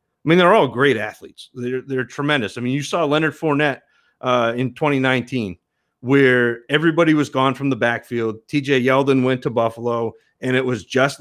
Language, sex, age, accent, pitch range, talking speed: English, male, 40-59, American, 125-150 Hz, 180 wpm